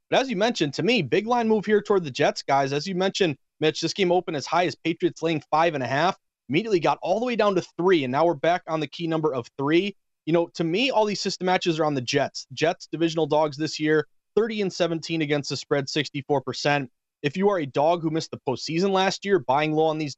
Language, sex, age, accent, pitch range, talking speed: English, male, 30-49, American, 145-180 Hz, 260 wpm